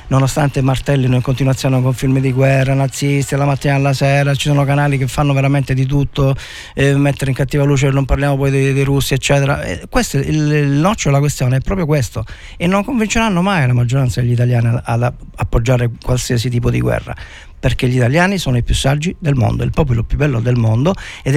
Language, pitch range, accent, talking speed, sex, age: Italian, 125-175 Hz, native, 210 wpm, male, 40-59